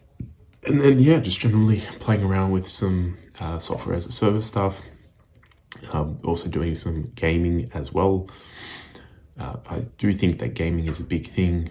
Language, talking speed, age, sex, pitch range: English, 165 wpm, 20-39, male, 80-100 Hz